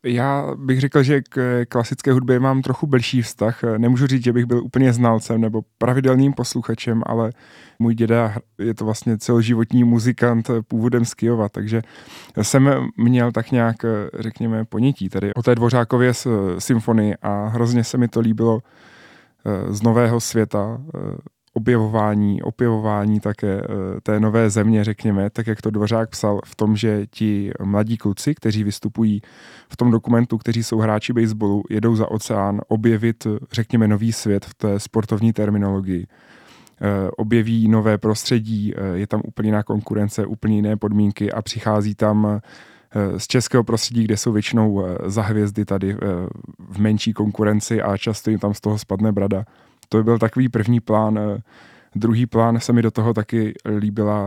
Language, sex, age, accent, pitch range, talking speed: Czech, male, 20-39, native, 105-115 Hz, 150 wpm